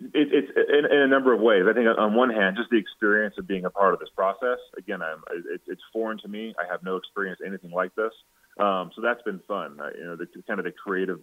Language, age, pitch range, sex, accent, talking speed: English, 30-49, 95-115 Hz, male, American, 250 wpm